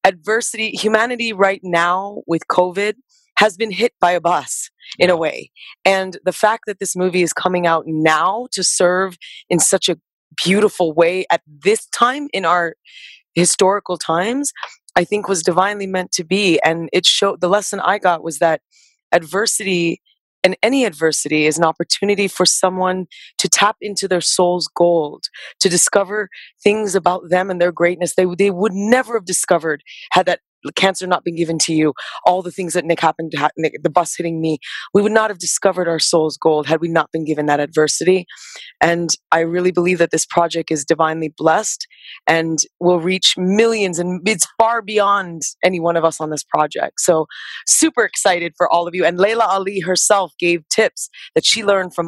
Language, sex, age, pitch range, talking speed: English, female, 20-39, 165-200 Hz, 185 wpm